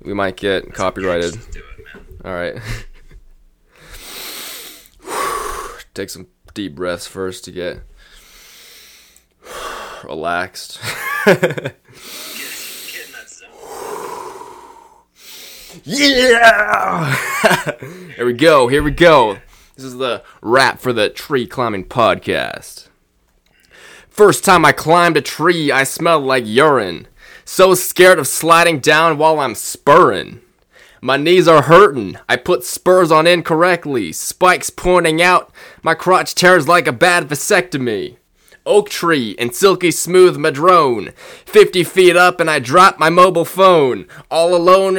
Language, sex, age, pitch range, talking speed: English, male, 20-39, 155-195 Hz, 110 wpm